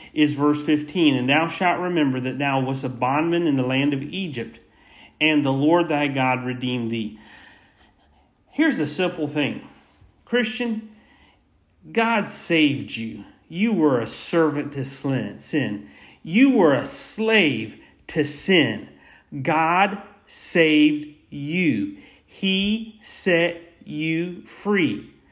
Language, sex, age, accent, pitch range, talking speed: English, male, 40-59, American, 145-190 Hz, 120 wpm